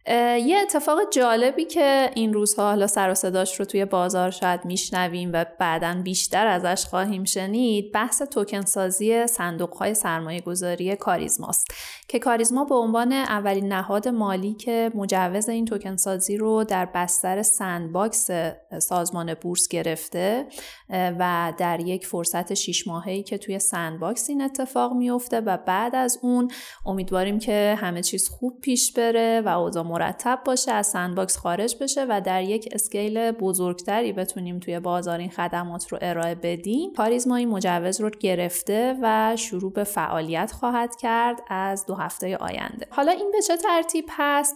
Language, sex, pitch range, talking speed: Persian, female, 185-235 Hz, 150 wpm